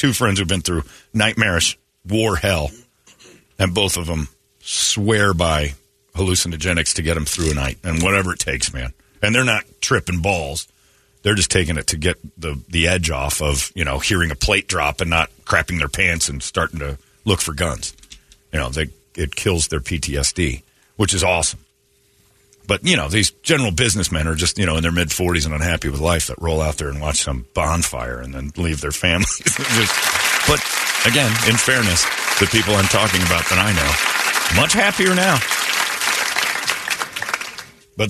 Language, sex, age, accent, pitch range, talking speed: English, male, 40-59, American, 80-110 Hz, 180 wpm